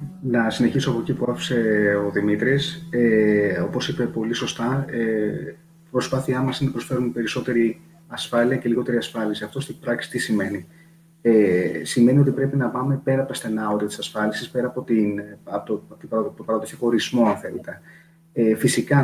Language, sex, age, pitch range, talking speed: Greek, male, 30-49, 110-135 Hz, 150 wpm